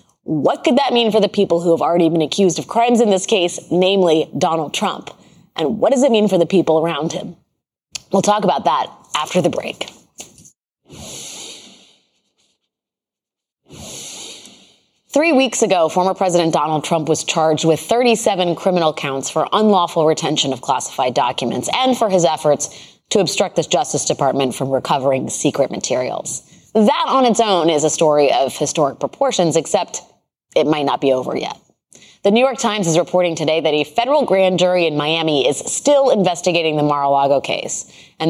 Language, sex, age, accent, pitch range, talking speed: English, female, 20-39, American, 155-210 Hz, 170 wpm